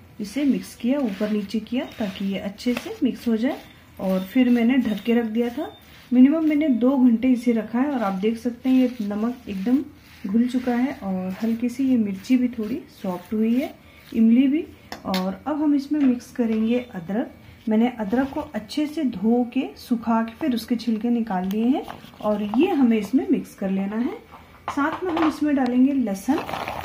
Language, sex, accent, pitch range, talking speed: Hindi, female, native, 220-265 Hz, 195 wpm